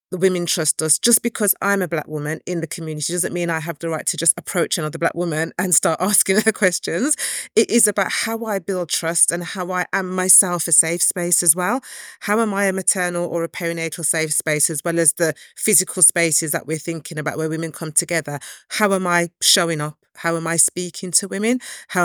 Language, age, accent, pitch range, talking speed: English, 30-49, British, 160-195 Hz, 225 wpm